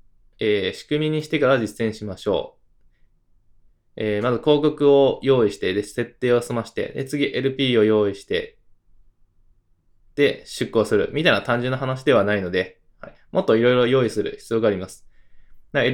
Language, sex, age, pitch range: Japanese, male, 20-39, 100-135 Hz